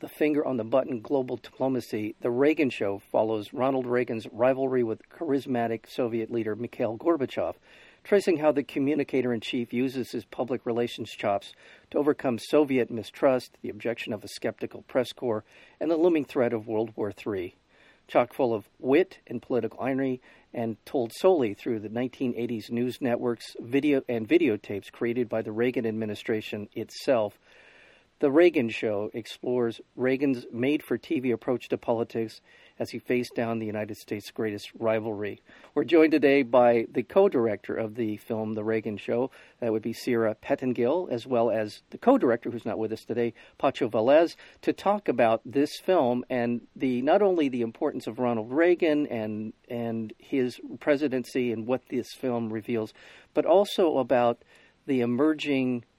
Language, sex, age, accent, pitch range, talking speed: English, male, 50-69, American, 115-135 Hz, 155 wpm